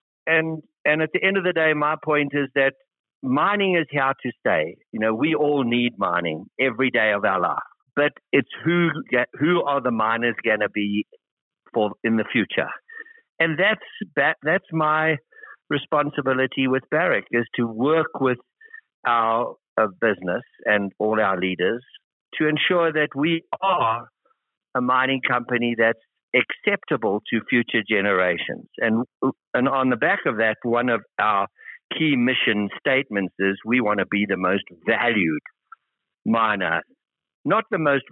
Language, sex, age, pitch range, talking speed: English, male, 60-79, 115-155 Hz, 155 wpm